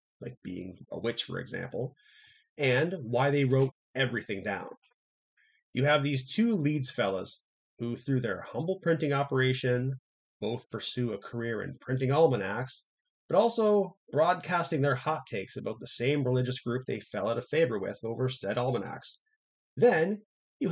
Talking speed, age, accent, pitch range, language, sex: 155 wpm, 30-49, American, 120-155 Hz, English, male